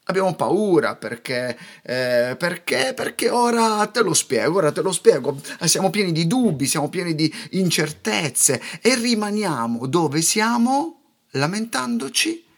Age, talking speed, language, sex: 30-49, 130 wpm, Italian, male